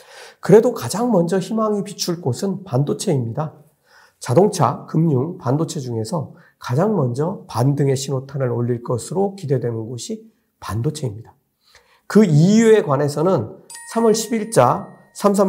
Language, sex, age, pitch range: Korean, male, 50-69, 135-195 Hz